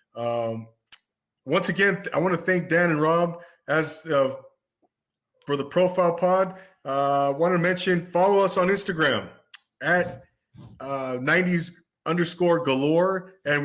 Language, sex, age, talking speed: English, male, 30-49, 135 wpm